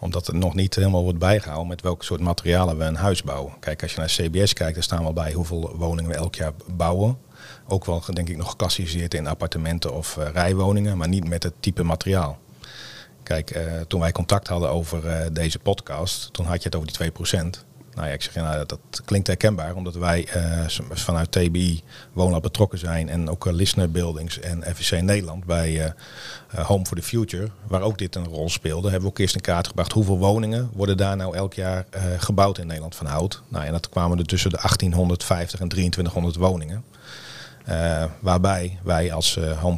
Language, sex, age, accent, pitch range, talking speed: Dutch, male, 40-59, Dutch, 85-95 Hz, 205 wpm